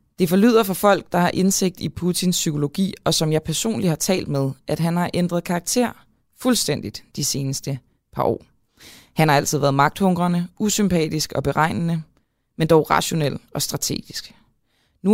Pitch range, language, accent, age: 135-175 Hz, Danish, native, 20-39